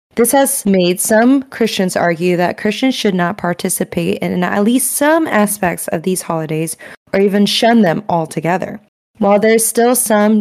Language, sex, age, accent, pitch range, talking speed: English, female, 20-39, American, 185-225 Hz, 160 wpm